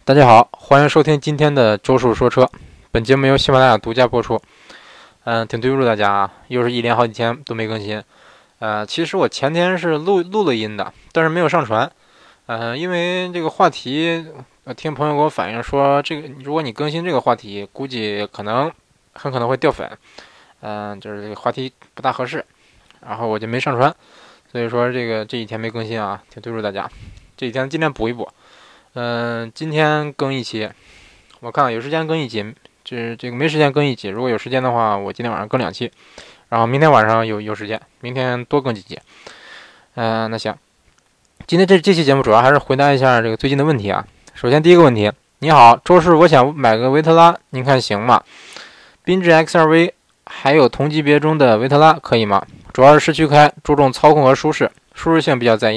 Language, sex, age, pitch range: Chinese, male, 20-39, 115-150 Hz